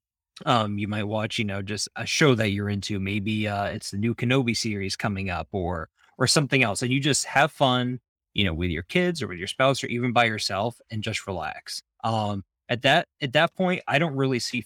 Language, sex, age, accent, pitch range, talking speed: English, male, 20-39, American, 100-125 Hz, 230 wpm